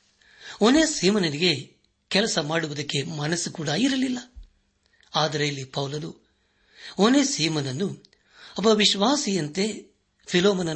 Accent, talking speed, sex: native, 85 wpm, male